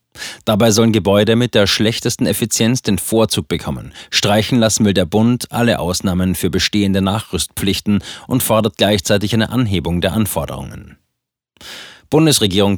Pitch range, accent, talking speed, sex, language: 95-115 Hz, German, 130 wpm, male, German